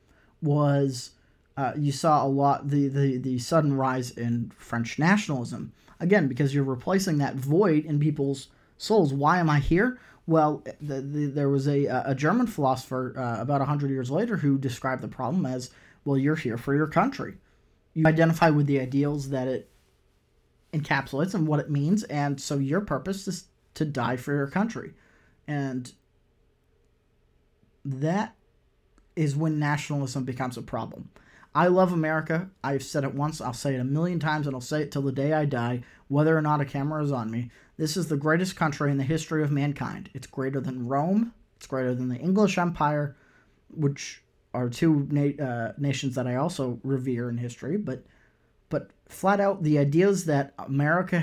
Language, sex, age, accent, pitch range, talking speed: English, male, 30-49, American, 130-155 Hz, 180 wpm